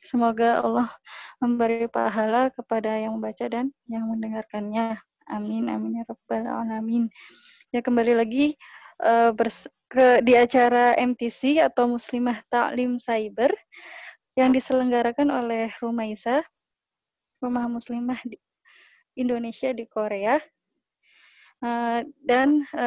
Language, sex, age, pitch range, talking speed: Indonesian, female, 20-39, 230-265 Hz, 90 wpm